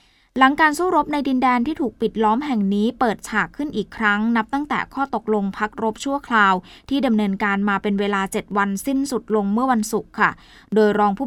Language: Thai